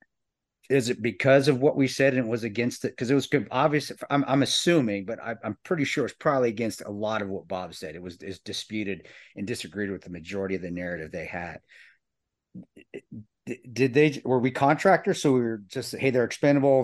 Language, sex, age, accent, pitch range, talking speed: English, male, 40-59, American, 100-130 Hz, 215 wpm